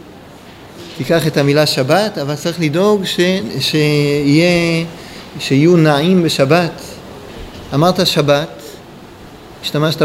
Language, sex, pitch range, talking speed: Hebrew, male, 145-185 Hz, 80 wpm